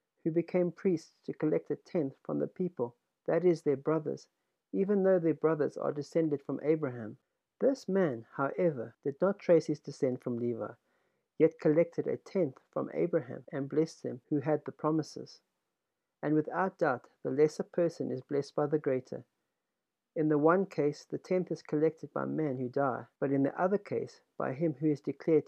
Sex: male